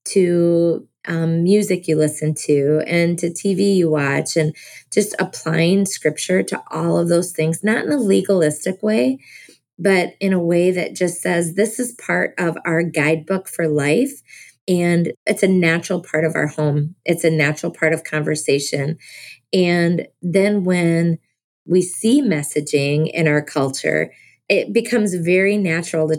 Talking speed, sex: 155 wpm, female